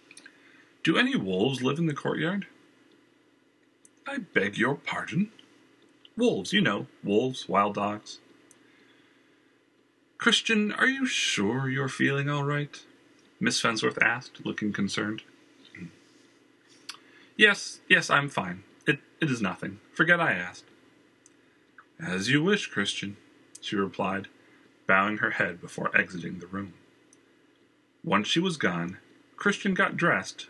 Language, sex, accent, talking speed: English, male, American, 120 wpm